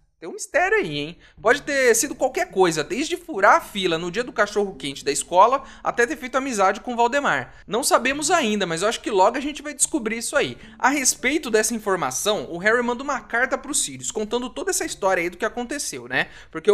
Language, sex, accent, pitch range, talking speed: Portuguese, male, Brazilian, 205-300 Hz, 225 wpm